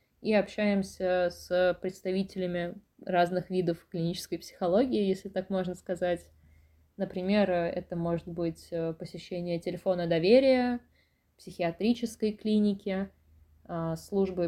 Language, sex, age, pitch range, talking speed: Russian, female, 20-39, 180-215 Hz, 90 wpm